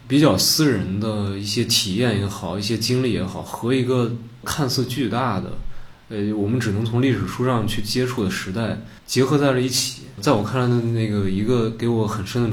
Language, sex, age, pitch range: Chinese, male, 20-39, 105-130 Hz